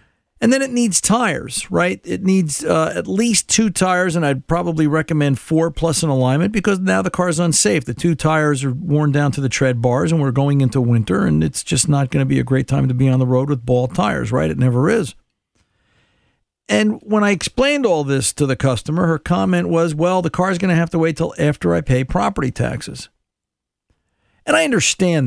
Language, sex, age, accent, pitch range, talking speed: English, male, 50-69, American, 130-180 Hz, 220 wpm